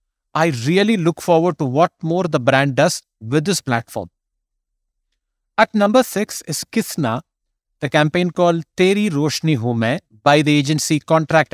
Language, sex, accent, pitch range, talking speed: English, male, Indian, 130-175 Hz, 145 wpm